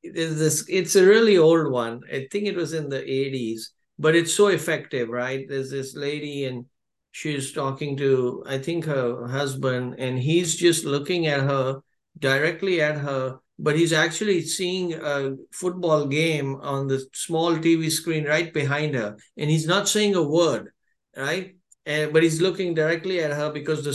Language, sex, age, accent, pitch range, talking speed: English, male, 60-79, Indian, 145-200 Hz, 170 wpm